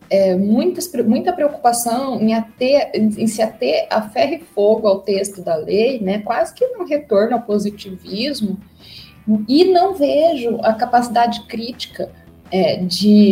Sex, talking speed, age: female, 145 wpm, 30-49